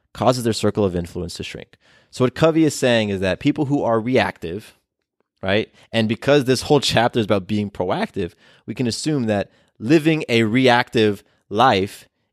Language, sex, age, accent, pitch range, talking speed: English, male, 20-39, American, 100-130 Hz, 175 wpm